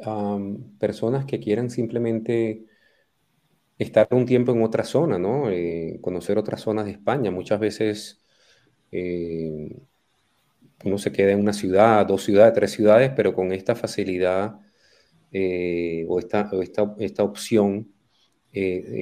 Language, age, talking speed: Spanish, 30-49, 140 wpm